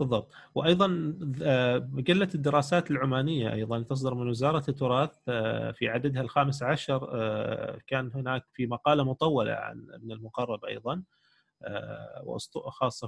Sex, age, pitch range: male, 30-49, 120-135 Hz